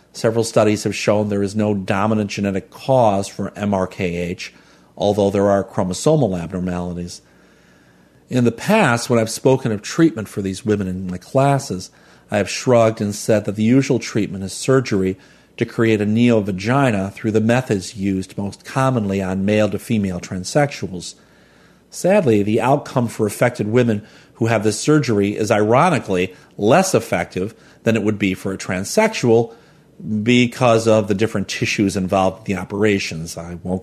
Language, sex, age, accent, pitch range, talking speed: English, male, 40-59, American, 95-125 Hz, 160 wpm